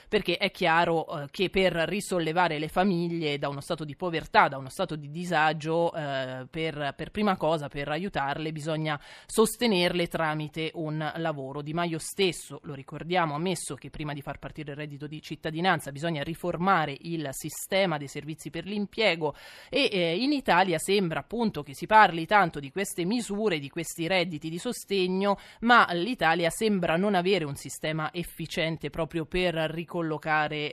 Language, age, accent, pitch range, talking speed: Italian, 20-39, native, 150-190 Hz, 165 wpm